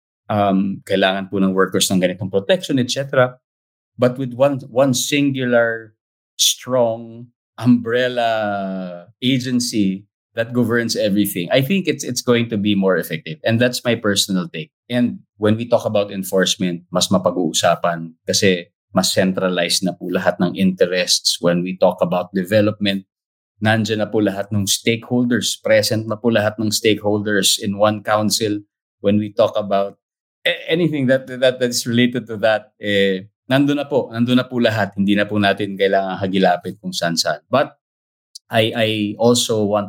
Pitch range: 95-115 Hz